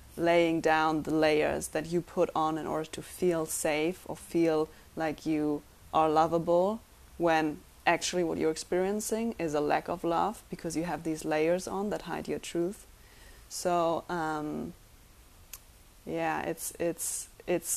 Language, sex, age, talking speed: English, female, 20-39, 150 wpm